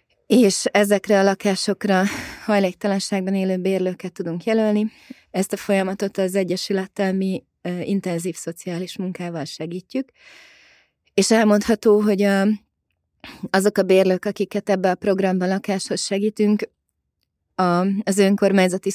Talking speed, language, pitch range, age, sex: 115 wpm, Hungarian, 180-200 Hz, 20-39, female